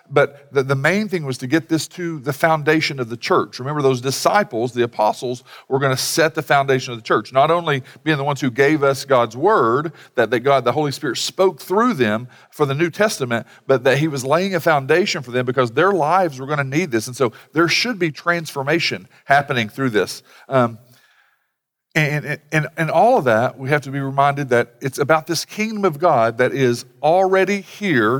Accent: American